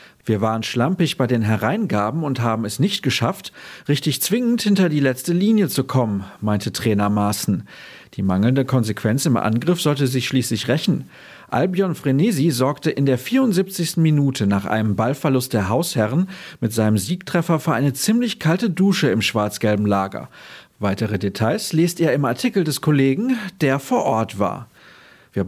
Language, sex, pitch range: German, male, 110-165 Hz